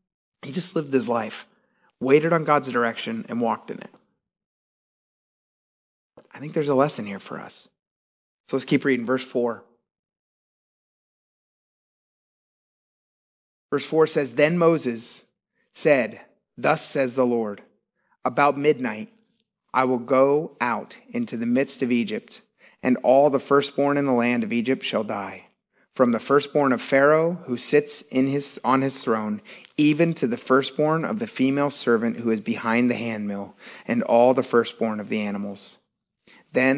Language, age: English, 30-49